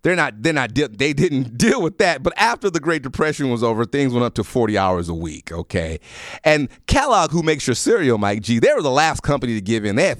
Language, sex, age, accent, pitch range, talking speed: English, male, 30-49, American, 115-155 Hz, 255 wpm